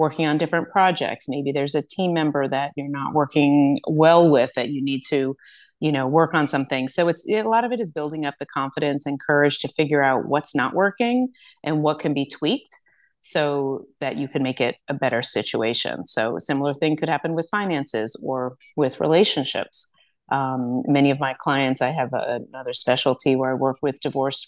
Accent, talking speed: American, 200 wpm